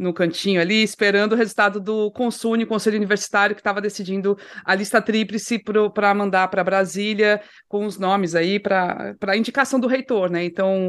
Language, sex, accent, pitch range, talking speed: Portuguese, female, Brazilian, 190-275 Hz, 175 wpm